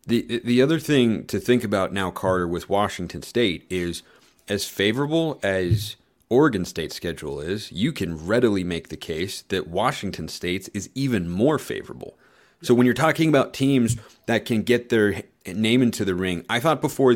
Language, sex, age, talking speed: English, male, 30-49, 175 wpm